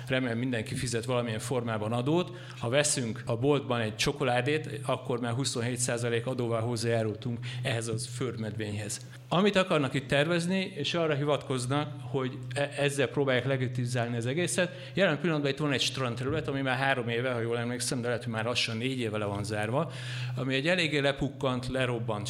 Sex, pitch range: male, 120-145 Hz